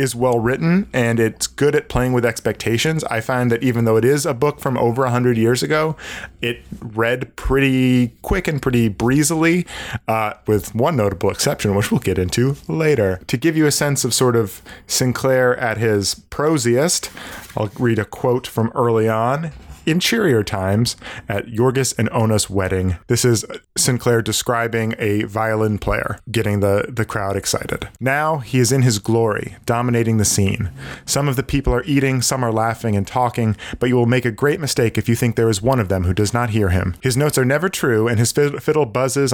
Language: English